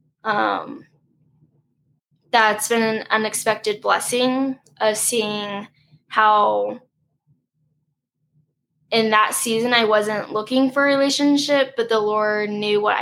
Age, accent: 10-29, American